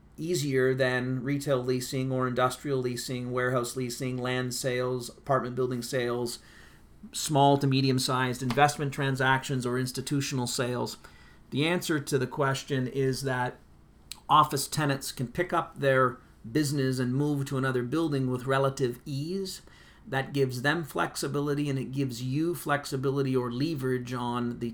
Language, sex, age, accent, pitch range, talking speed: English, male, 40-59, American, 125-140 Hz, 140 wpm